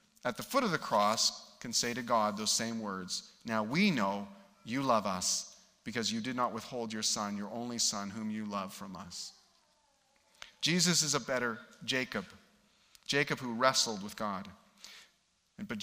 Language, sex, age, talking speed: English, male, 40-59, 170 wpm